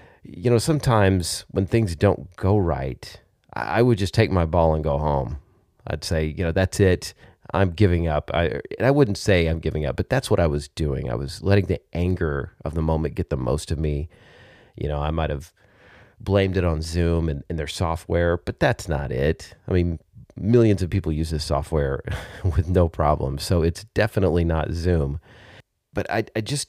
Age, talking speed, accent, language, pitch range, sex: 30-49, 200 wpm, American, English, 80-100 Hz, male